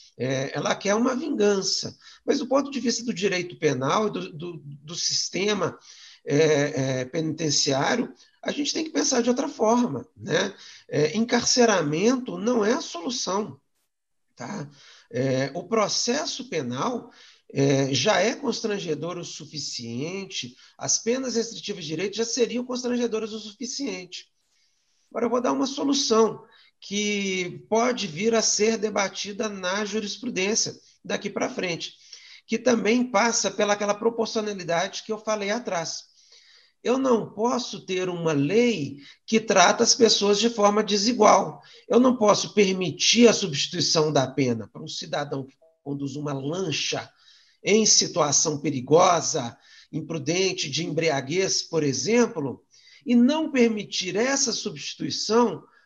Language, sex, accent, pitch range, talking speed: Portuguese, male, Brazilian, 160-235 Hz, 125 wpm